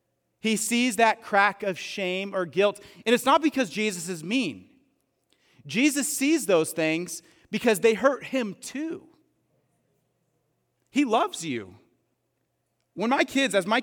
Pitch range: 145-225 Hz